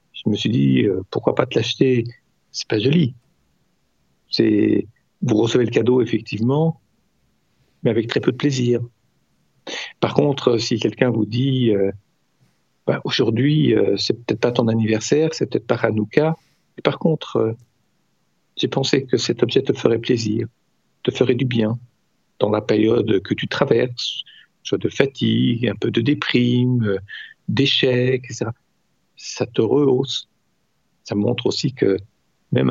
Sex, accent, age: male, French, 50-69